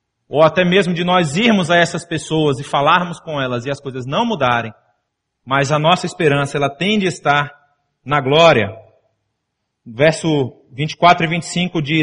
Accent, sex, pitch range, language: Brazilian, male, 135-190 Hz, Portuguese